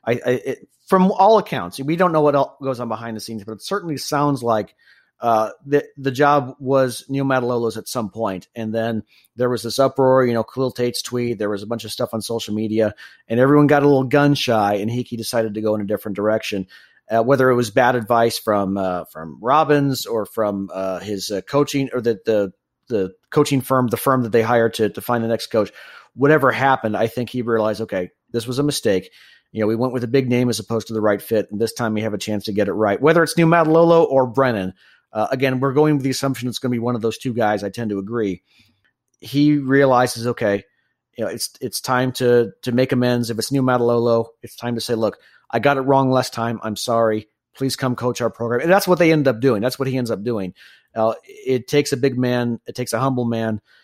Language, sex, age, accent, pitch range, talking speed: English, male, 40-59, American, 110-135 Hz, 245 wpm